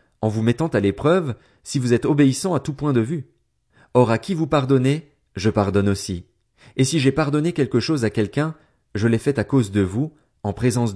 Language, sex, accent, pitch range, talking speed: French, male, French, 105-150 Hz, 215 wpm